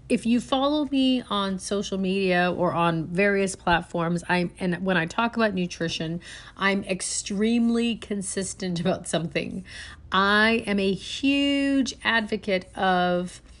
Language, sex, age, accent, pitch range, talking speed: English, female, 40-59, American, 185-250 Hz, 130 wpm